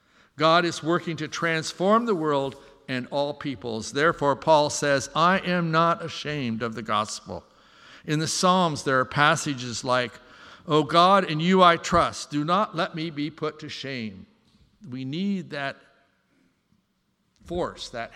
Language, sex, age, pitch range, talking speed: English, male, 60-79, 125-165 Hz, 155 wpm